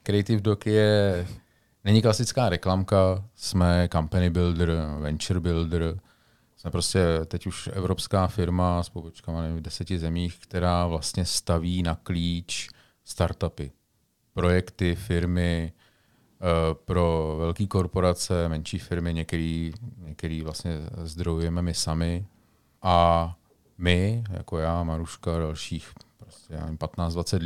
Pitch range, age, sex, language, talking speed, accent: 80-95 Hz, 40-59, male, Czech, 110 wpm, native